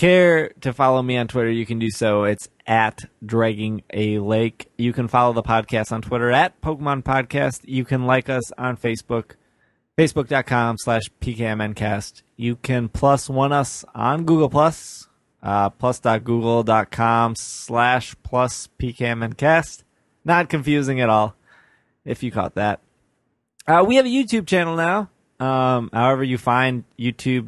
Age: 20-39